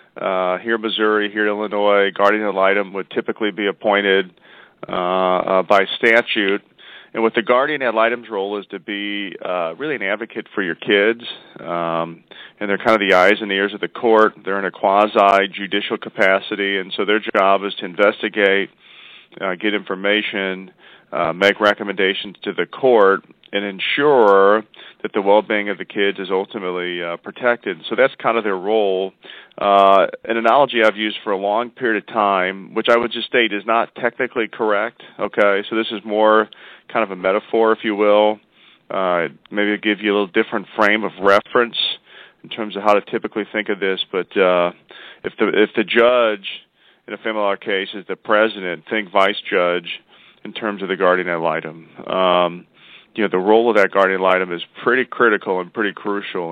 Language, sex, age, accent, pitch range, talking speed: English, male, 40-59, American, 95-110 Hz, 190 wpm